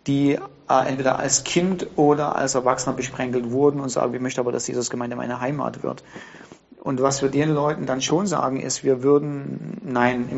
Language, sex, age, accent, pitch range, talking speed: German, male, 40-59, German, 130-155 Hz, 195 wpm